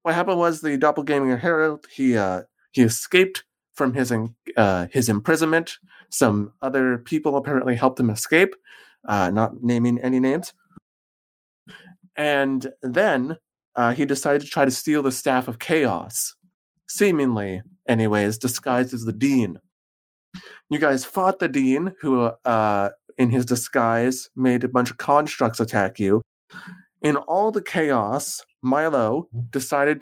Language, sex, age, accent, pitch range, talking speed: English, male, 30-49, American, 120-150 Hz, 140 wpm